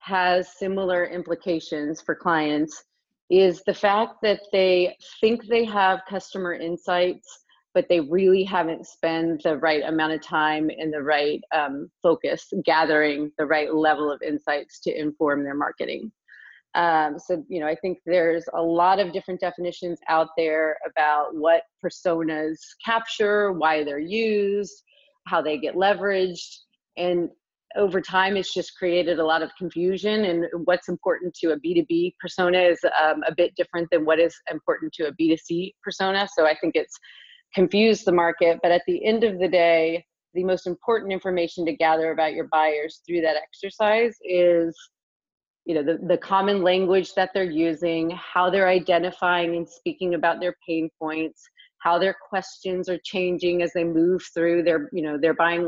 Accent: American